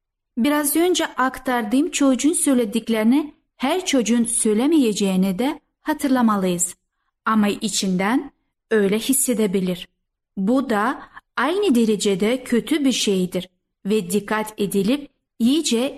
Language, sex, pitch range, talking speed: Turkish, female, 205-275 Hz, 95 wpm